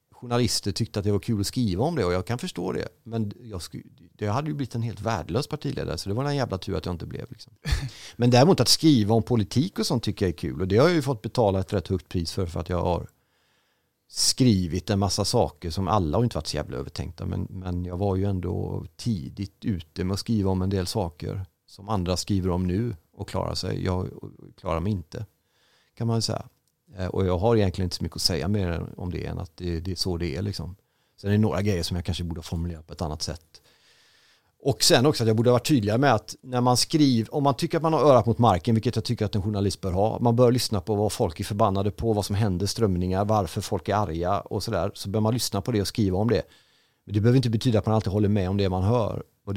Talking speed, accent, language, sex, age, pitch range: 260 wpm, native, Swedish, male, 40-59, 90-115 Hz